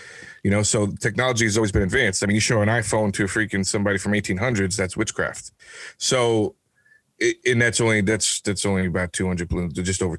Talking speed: 200 wpm